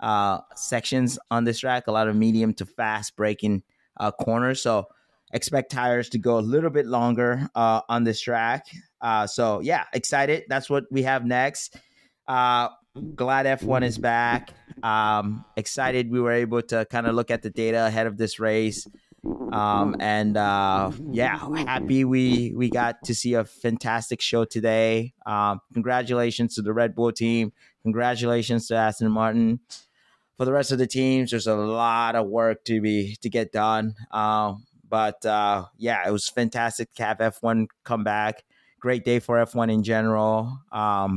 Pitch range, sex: 110-125 Hz, male